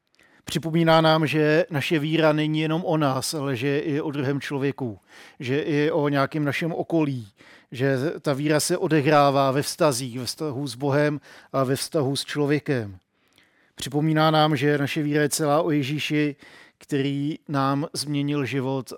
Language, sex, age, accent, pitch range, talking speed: Czech, male, 50-69, native, 135-150 Hz, 160 wpm